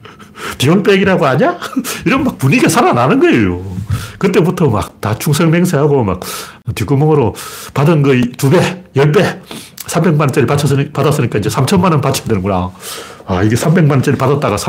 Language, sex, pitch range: Korean, male, 110-150 Hz